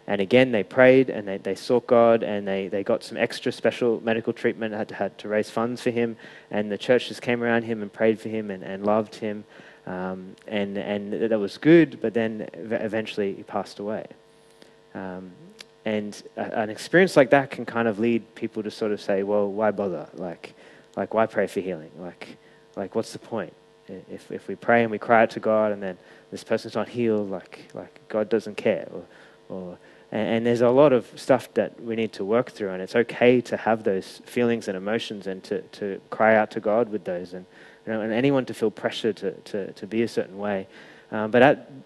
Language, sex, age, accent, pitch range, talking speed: English, male, 20-39, Australian, 105-125 Hz, 220 wpm